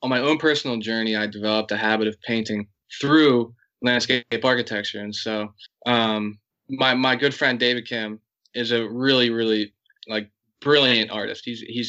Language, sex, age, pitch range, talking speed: English, male, 20-39, 110-125 Hz, 155 wpm